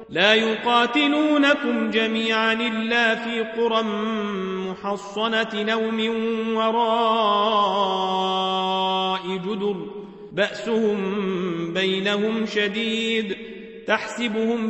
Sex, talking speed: male, 55 wpm